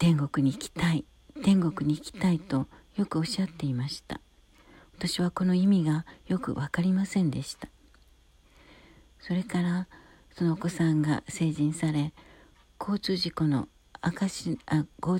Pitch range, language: 145-175 Hz, Japanese